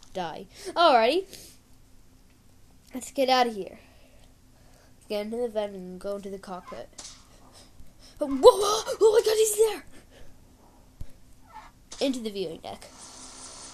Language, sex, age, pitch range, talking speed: English, female, 10-29, 185-240 Hz, 120 wpm